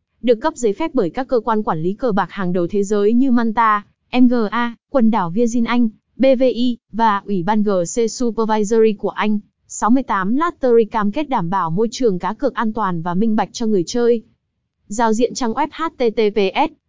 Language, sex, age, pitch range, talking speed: Vietnamese, female, 20-39, 200-250 Hz, 190 wpm